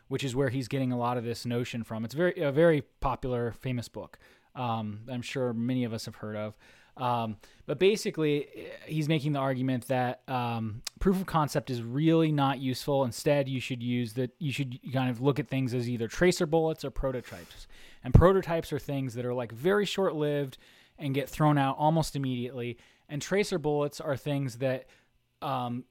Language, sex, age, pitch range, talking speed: English, male, 20-39, 125-150 Hz, 195 wpm